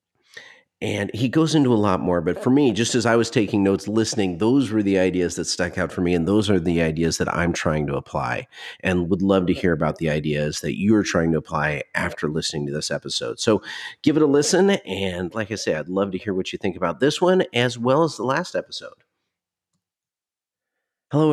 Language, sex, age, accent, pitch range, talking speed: English, male, 40-59, American, 90-115 Hz, 225 wpm